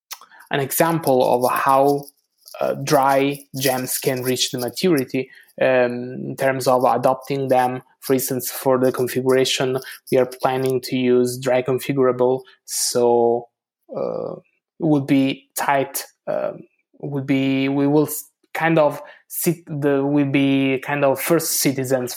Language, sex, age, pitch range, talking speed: English, male, 20-39, 125-140 Hz, 135 wpm